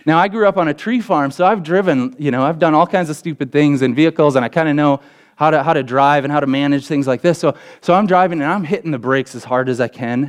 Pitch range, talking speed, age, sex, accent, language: 140-185 Hz, 310 wpm, 30-49, male, American, English